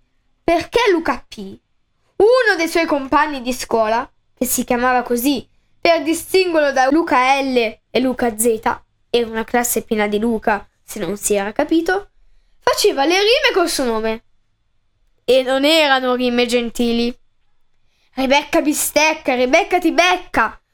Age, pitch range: 10-29, 235-325 Hz